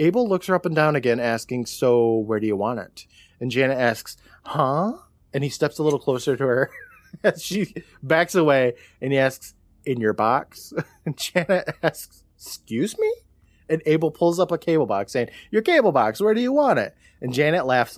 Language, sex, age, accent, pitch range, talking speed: English, male, 20-39, American, 115-160 Hz, 200 wpm